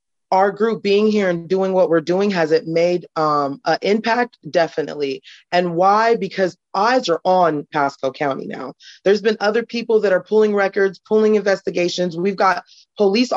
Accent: American